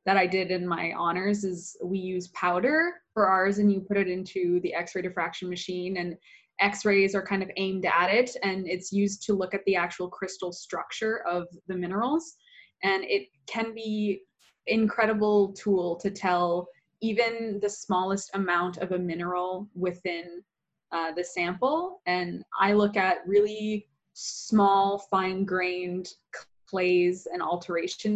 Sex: female